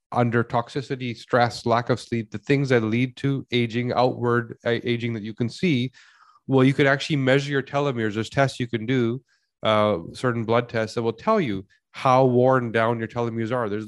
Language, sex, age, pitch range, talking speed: English, male, 30-49, 115-130 Hz, 195 wpm